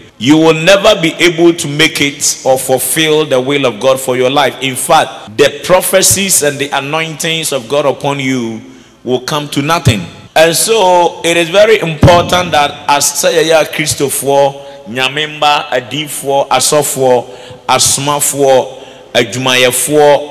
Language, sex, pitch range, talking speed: English, male, 125-150 Hz, 135 wpm